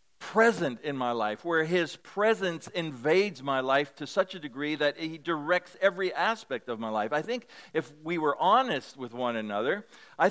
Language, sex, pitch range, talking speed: English, male, 145-190 Hz, 185 wpm